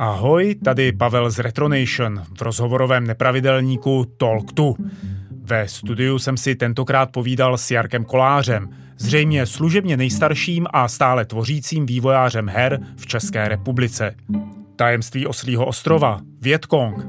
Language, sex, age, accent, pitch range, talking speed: Czech, male, 30-49, native, 115-140 Hz, 115 wpm